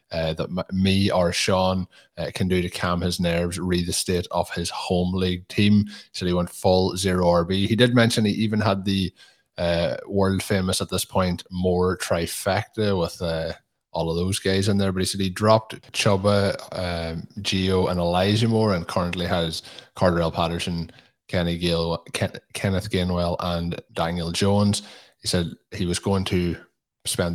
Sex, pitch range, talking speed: male, 85-100 Hz, 180 wpm